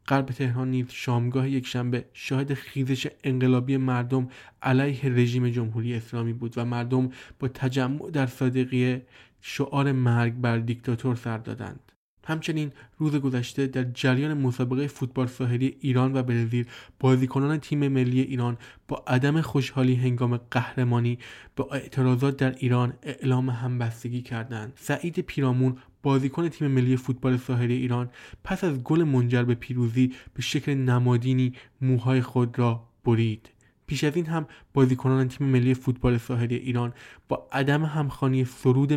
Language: Persian